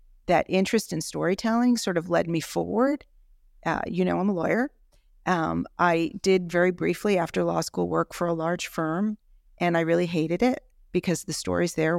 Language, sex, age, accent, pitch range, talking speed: English, female, 40-59, American, 155-185 Hz, 185 wpm